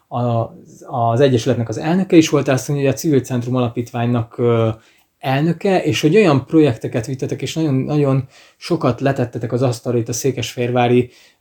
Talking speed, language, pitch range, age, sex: 145 wpm, Hungarian, 125-150 Hz, 20-39, male